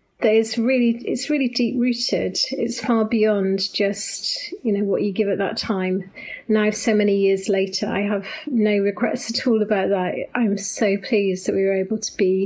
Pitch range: 195-220 Hz